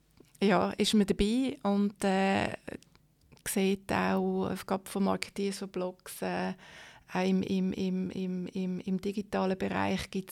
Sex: female